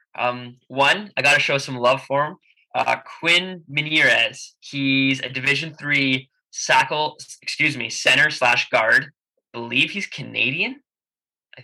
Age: 20-39